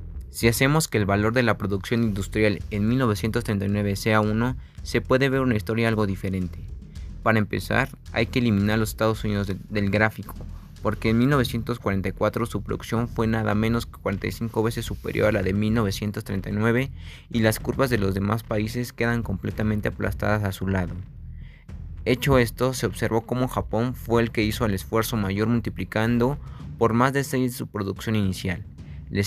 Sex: male